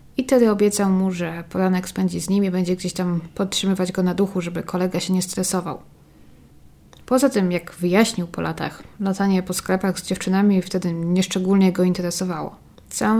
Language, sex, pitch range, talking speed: Polish, female, 180-210 Hz, 175 wpm